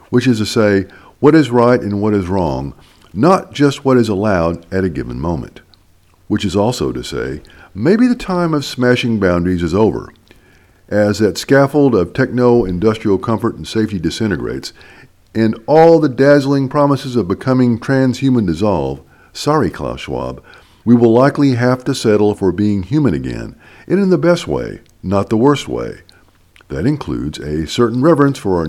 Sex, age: male, 50-69